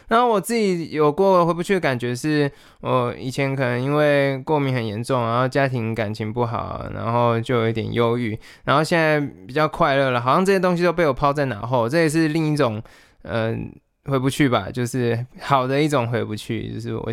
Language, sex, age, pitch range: Chinese, male, 20-39, 115-150 Hz